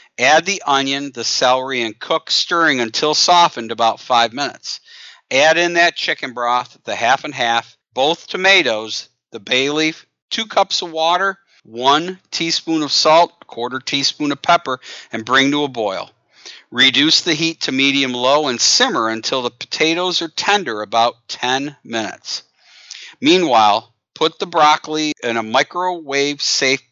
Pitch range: 120-165 Hz